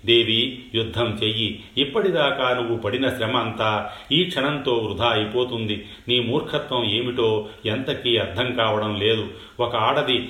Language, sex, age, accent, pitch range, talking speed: Telugu, male, 40-59, native, 105-125 Hz, 120 wpm